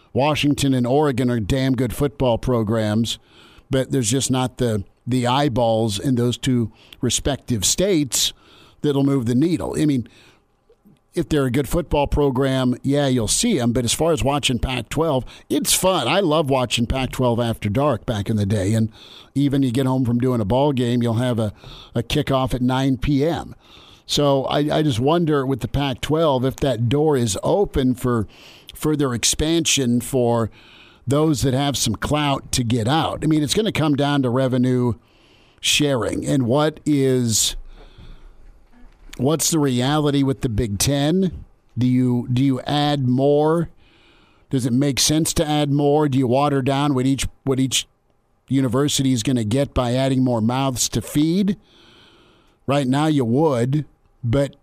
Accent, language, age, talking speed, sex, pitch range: American, English, 50-69, 170 wpm, male, 120-145 Hz